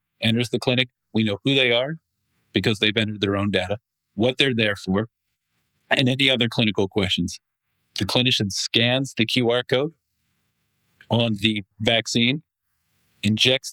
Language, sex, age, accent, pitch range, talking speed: English, male, 40-59, American, 105-120 Hz, 145 wpm